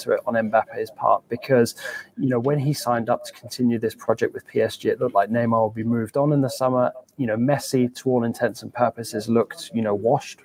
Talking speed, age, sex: 230 wpm, 20-39, male